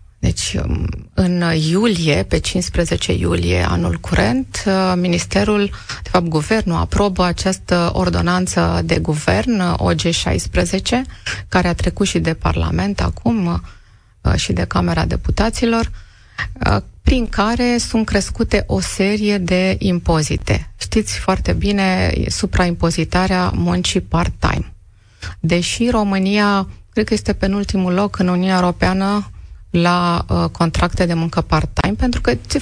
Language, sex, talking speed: Romanian, female, 115 wpm